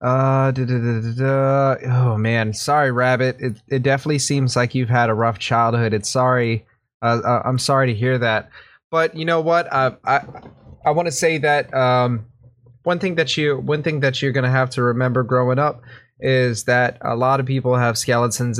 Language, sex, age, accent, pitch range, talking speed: English, male, 20-39, American, 125-150 Hz, 205 wpm